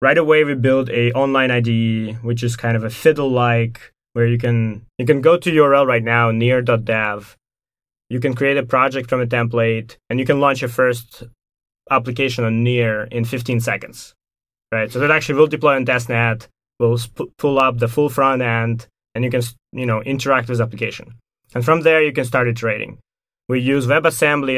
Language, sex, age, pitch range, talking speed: English, male, 20-39, 115-135 Hz, 195 wpm